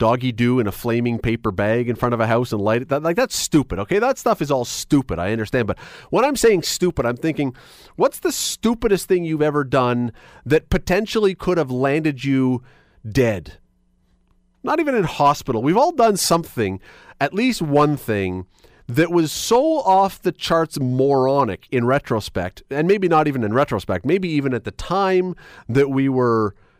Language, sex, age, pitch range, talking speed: English, male, 40-59, 115-175 Hz, 185 wpm